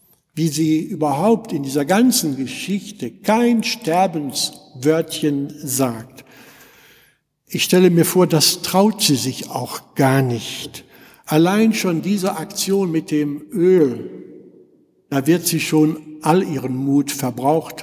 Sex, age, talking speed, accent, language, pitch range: male, 60-79, 120 wpm, German, German, 140-200 Hz